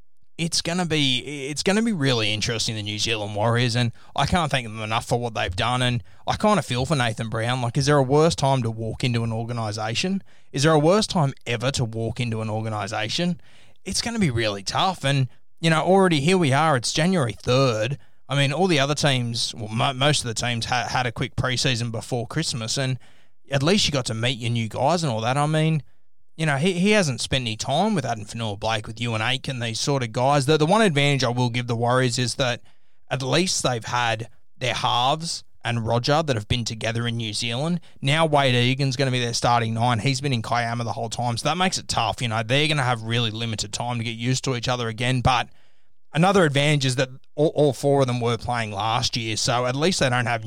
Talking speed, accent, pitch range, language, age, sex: 240 wpm, Australian, 115-140 Hz, English, 20-39, male